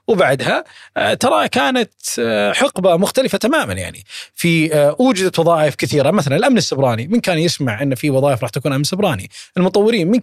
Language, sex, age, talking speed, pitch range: Arabic, male, 20-39, 155 wpm, 140-205 Hz